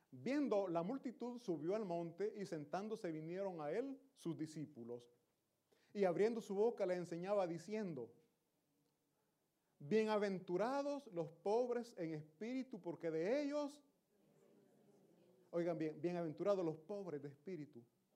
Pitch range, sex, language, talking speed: 150-205 Hz, male, Italian, 115 wpm